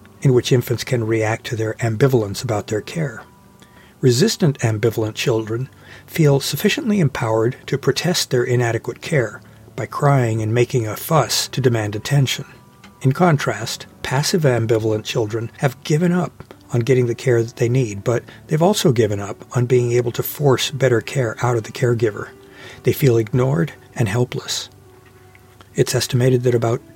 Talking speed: 160 wpm